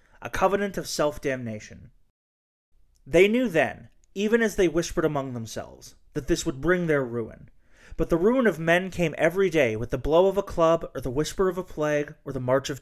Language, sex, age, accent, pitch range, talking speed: English, male, 30-49, American, 120-170 Hz, 200 wpm